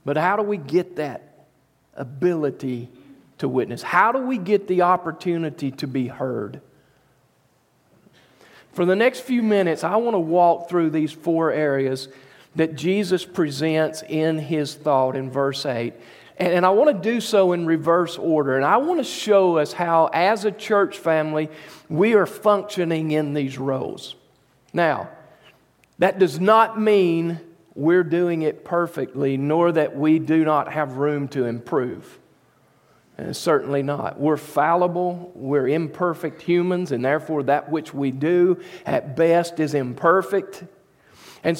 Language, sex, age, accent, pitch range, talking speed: English, male, 40-59, American, 150-200 Hz, 150 wpm